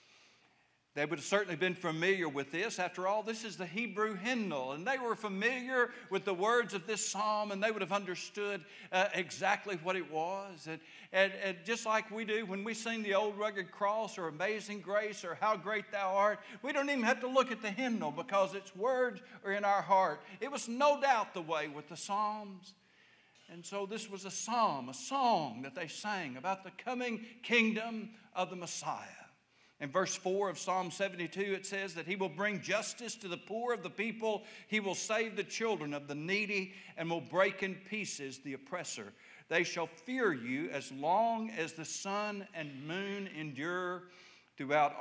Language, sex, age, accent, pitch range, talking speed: English, male, 60-79, American, 175-215 Hz, 195 wpm